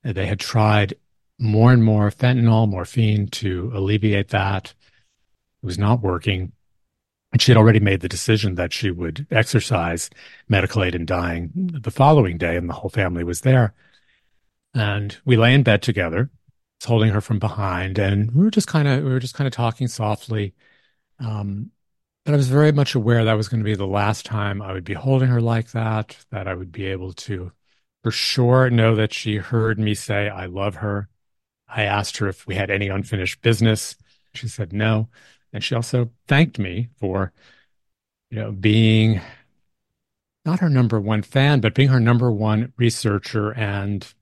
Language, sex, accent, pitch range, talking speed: English, male, American, 100-125 Hz, 180 wpm